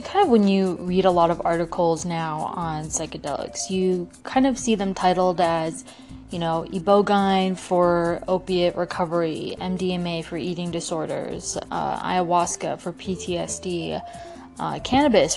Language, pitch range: English, 175-205 Hz